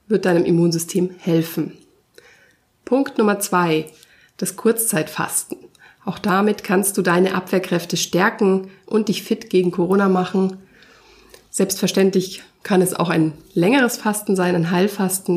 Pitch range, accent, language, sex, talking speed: 170-200 Hz, German, German, female, 125 wpm